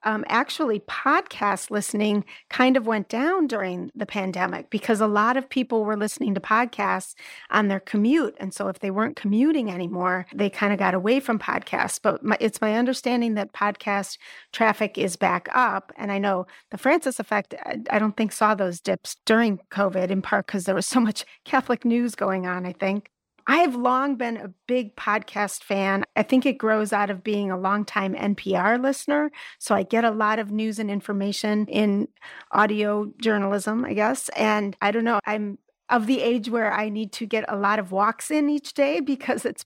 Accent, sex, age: American, female, 30-49